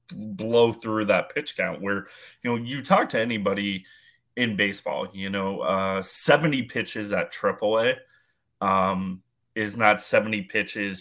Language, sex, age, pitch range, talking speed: English, male, 20-39, 95-110 Hz, 140 wpm